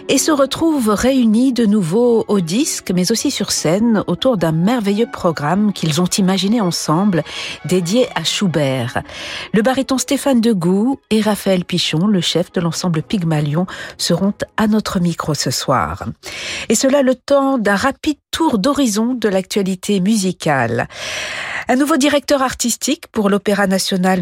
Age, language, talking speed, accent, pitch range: 50-69, French, 145 wpm, French, 170-235 Hz